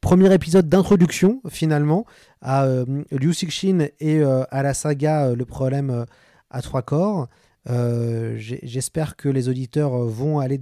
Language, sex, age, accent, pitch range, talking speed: French, male, 30-49, French, 125-150 Hz, 140 wpm